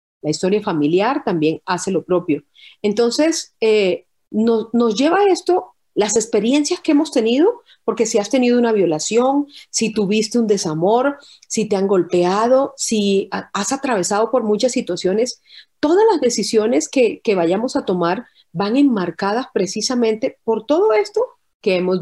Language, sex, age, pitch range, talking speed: Spanish, female, 40-59, 185-260 Hz, 150 wpm